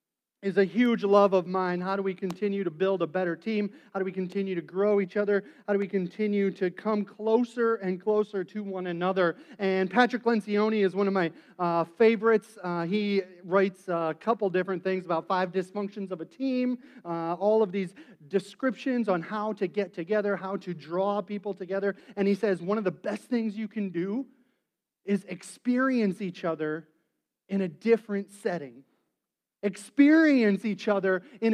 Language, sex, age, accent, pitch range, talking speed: English, male, 40-59, American, 195-270 Hz, 180 wpm